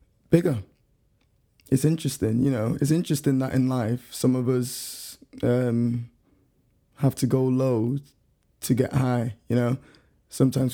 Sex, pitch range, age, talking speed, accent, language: male, 125-135 Hz, 20-39, 135 wpm, British, English